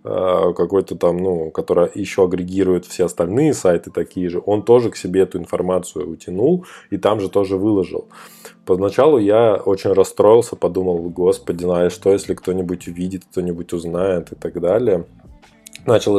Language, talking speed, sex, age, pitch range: Russian, 150 wpm, male, 20-39, 90-105 Hz